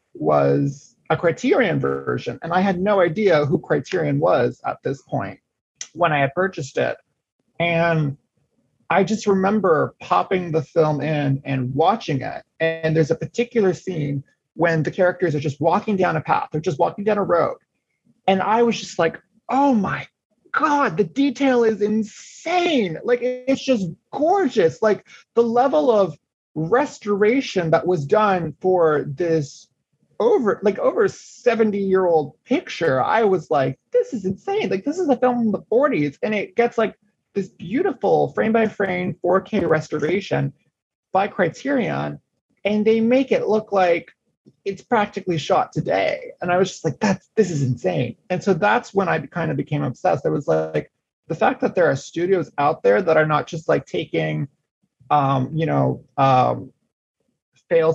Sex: male